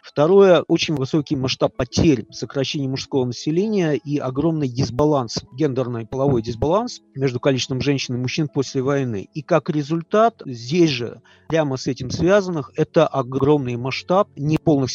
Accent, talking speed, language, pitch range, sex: native, 140 wpm, Russian, 130-160 Hz, male